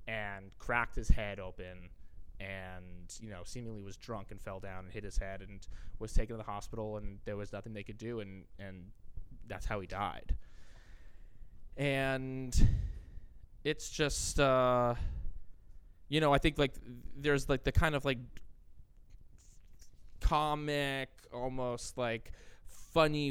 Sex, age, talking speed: male, 20-39, 145 wpm